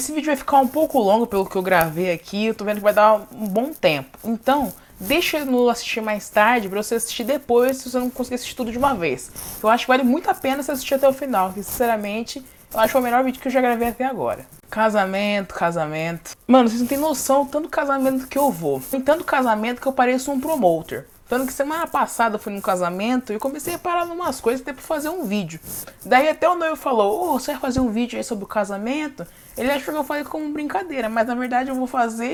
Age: 20-39